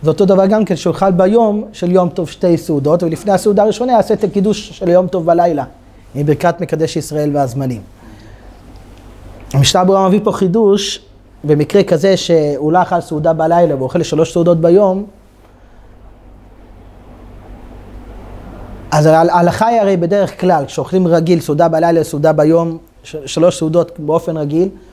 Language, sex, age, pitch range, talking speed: Hebrew, male, 30-49, 150-195 Hz, 135 wpm